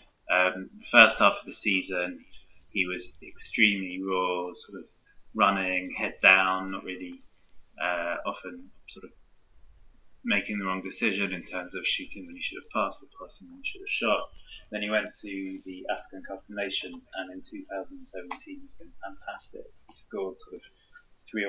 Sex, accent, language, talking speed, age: male, British, English, 170 wpm, 20-39